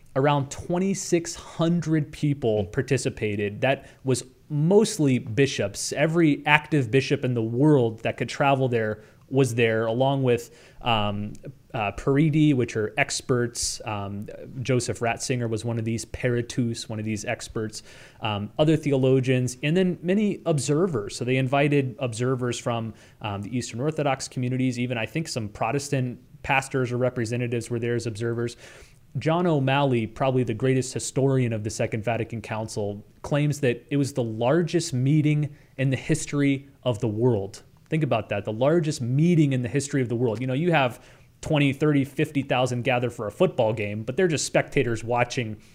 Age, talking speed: 30-49, 160 wpm